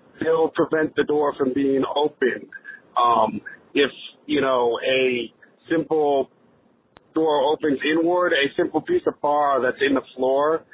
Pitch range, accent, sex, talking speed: 130-155 Hz, American, male, 145 wpm